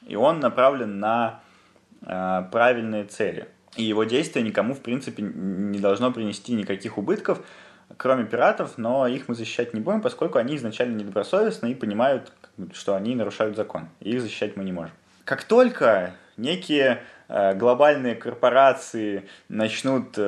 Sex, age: male, 20-39